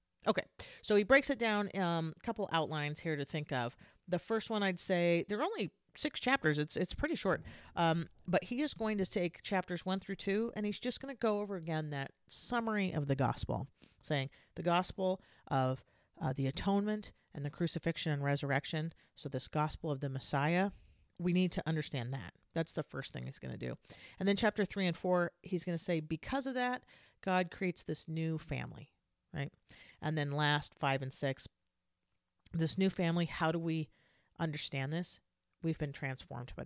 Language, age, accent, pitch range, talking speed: English, 40-59, American, 135-190 Hz, 195 wpm